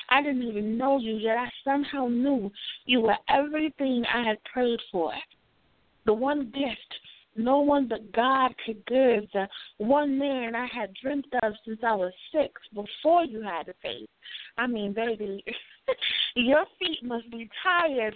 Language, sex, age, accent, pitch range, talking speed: English, female, 20-39, American, 225-270 Hz, 160 wpm